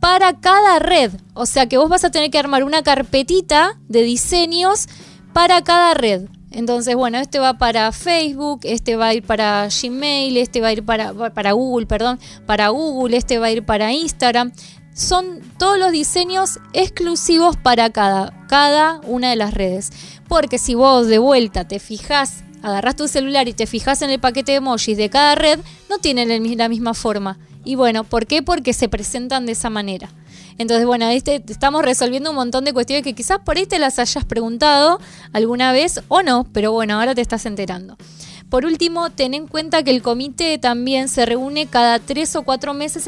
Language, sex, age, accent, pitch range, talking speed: Spanish, female, 20-39, Argentinian, 225-295 Hz, 190 wpm